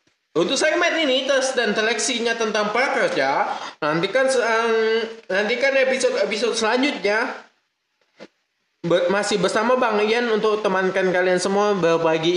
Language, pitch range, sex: Indonesian, 175-255 Hz, male